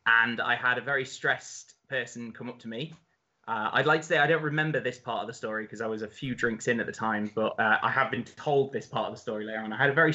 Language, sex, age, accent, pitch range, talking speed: English, male, 20-39, British, 130-200 Hz, 300 wpm